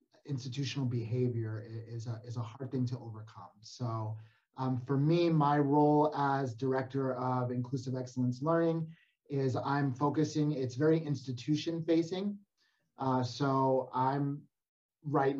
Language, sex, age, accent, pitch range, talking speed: English, male, 30-49, American, 125-145 Hz, 115 wpm